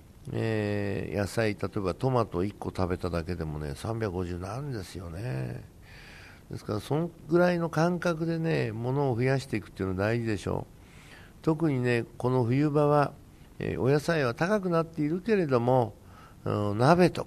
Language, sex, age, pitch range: Japanese, male, 60-79, 100-150 Hz